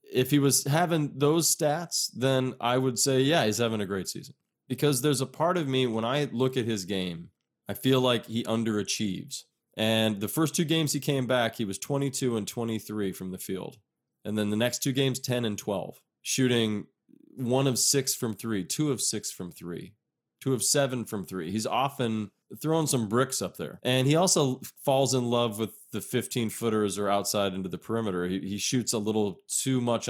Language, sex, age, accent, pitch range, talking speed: English, male, 30-49, American, 100-130 Hz, 205 wpm